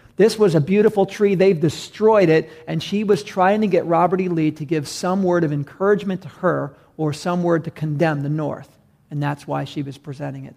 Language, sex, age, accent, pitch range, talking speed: English, male, 40-59, American, 150-195 Hz, 220 wpm